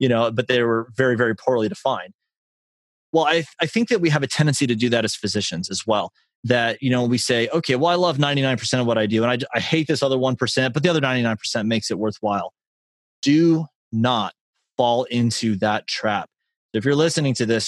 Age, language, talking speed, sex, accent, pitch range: 30-49, English, 220 wpm, male, American, 110-130 Hz